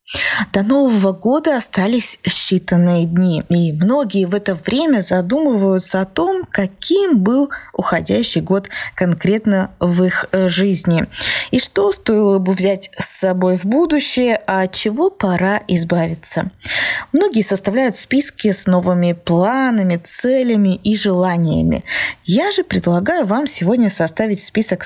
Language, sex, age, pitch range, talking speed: Russian, female, 20-39, 180-250 Hz, 125 wpm